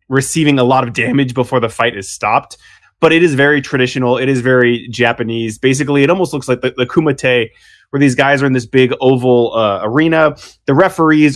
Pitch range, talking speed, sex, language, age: 120-155 Hz, 205 wpm, male, English, 20-39